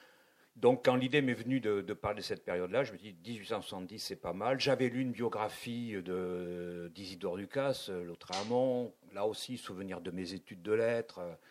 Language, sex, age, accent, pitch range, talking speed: French, male, 50-69, French, 95-125 Hz, 175 wpm